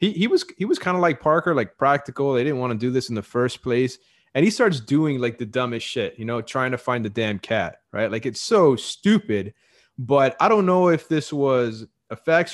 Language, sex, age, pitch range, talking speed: English, male, 30-49, 115-140 Hz, 240 wpm